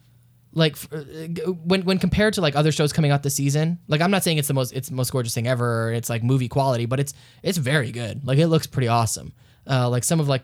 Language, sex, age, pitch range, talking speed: English, male, 10-29, 120-145 Hz, 260 wpm